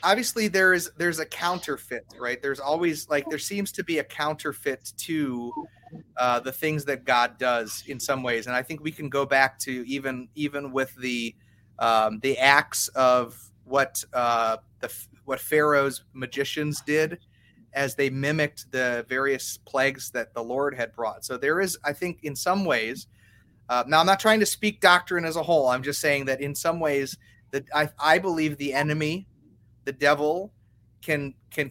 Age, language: 30-49, English